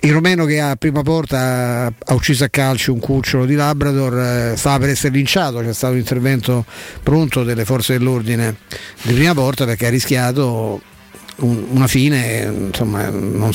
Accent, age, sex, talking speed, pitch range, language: native, 50-69, male, 155 wpm, 125-145 Hz, Italian